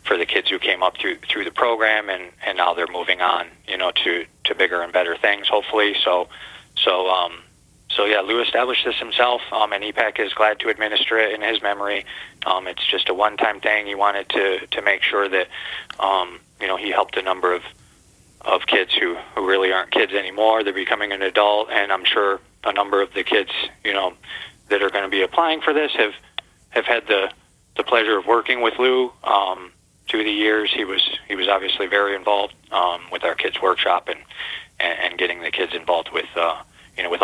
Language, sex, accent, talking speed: English, male, American, 215 wpm